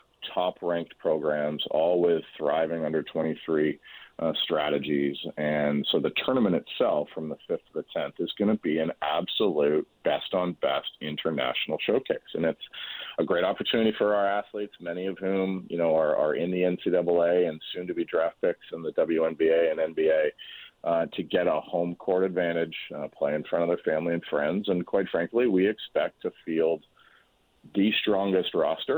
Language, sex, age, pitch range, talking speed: English, male, 40-59, 80-115 Hz, 175 wpm